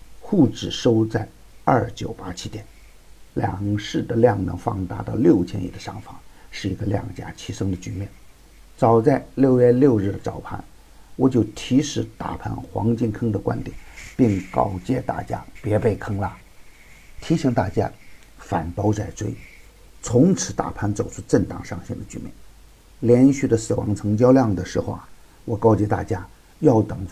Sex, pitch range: male, 95-125 Hz